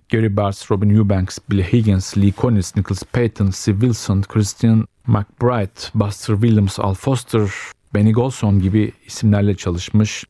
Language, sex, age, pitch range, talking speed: Turkish, male, 40-59, 100-115 Hz, 135 wpm